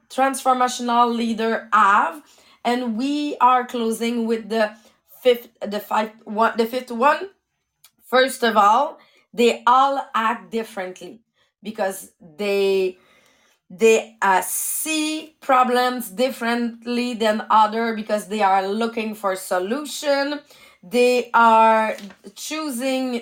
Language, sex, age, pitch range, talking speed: English, female, 30-49, 220-265 Hz, 105 wpm